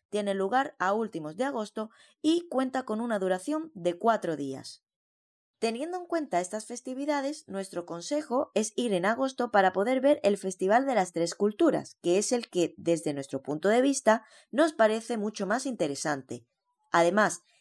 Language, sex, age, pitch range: Spanish, female, 20-39, 150-240 Hz